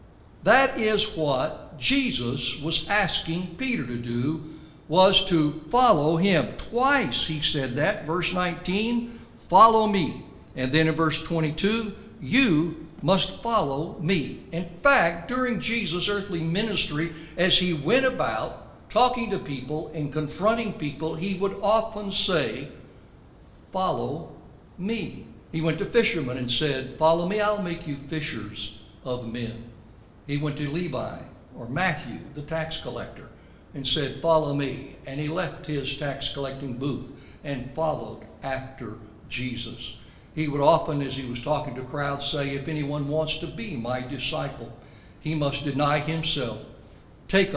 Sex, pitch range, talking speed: male, 130-180 Hz, 140 wpm